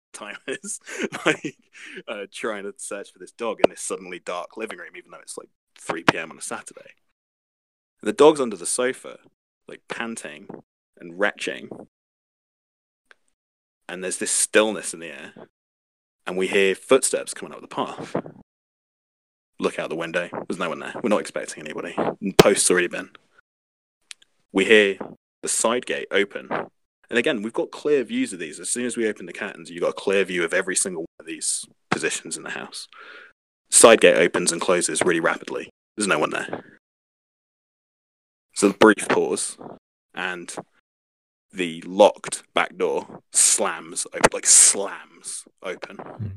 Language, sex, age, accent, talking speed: English, male, 30-49, British, 165 wpm